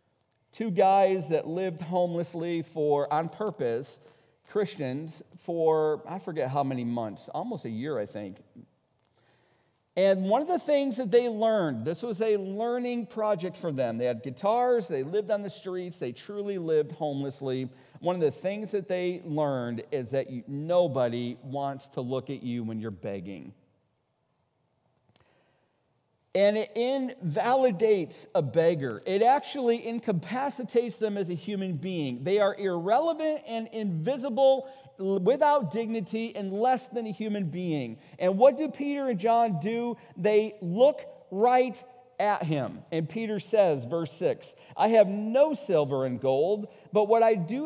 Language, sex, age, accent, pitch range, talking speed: English, male, 40-59, American, 155-230 Hz, 150 wpm